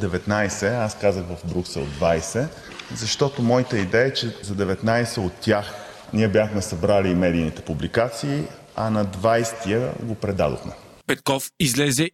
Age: 30-49